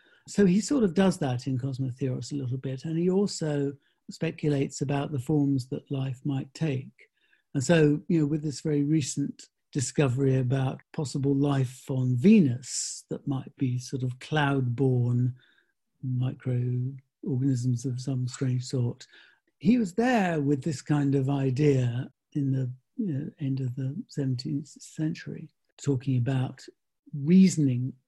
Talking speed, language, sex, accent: 145 wpm, English, male, British